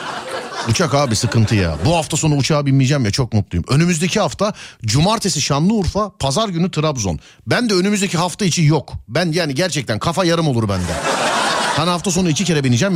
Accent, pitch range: native, 125-190 Hz